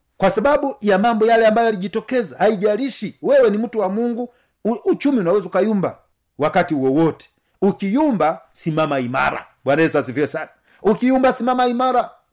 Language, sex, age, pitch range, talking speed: Swahili, male, 50-69, 175-240 Hz, 145 wpm